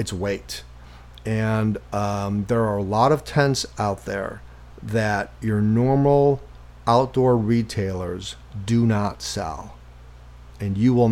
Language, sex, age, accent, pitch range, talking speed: English, male, 40-59, American, 90-115 Hz, 125 wpm